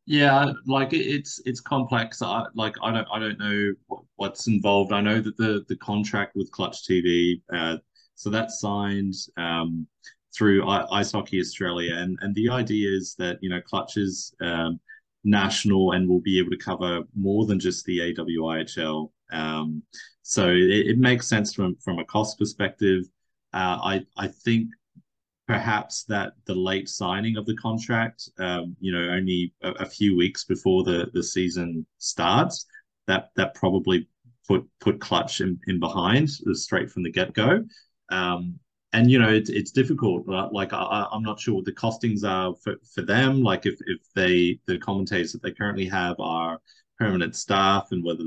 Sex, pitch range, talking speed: male, 90-110 Hz, 175 wpm